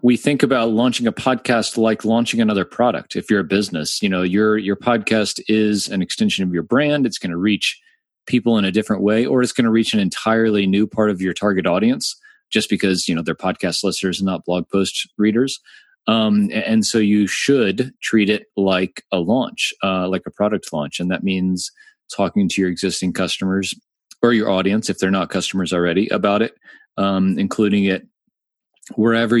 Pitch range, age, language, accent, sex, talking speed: 95-120 Hz, 30-49, English, American, male, 195 wpm